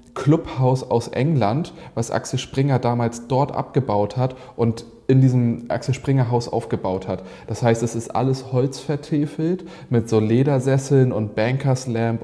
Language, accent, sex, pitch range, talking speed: German, German, male, 110-135 Hz, 140 wpm